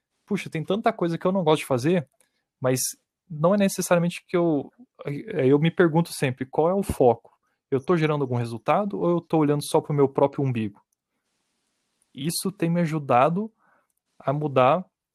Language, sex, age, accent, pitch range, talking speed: Portuguese, male, 20-39, Brazilian, 135-175 Hz, 180 wpm